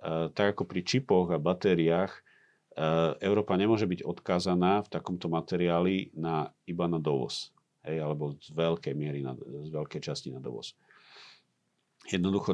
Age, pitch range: 40-59, 85-105 Hz